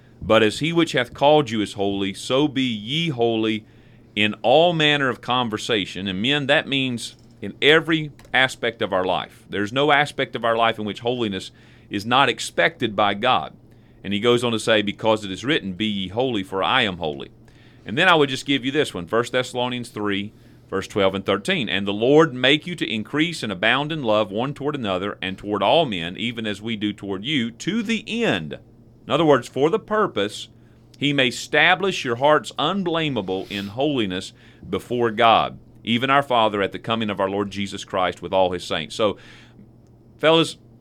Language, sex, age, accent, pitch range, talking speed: English, male, 40-59, American, 105-140 Hz, 200 wpm